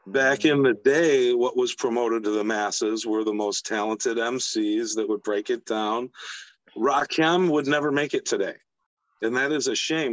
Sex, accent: male, American